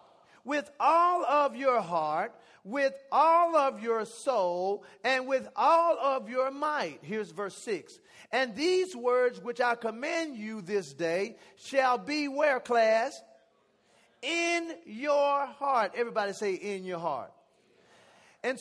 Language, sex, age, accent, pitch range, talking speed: English, male, 40-59, American, 210-275 Hz, 130 wpm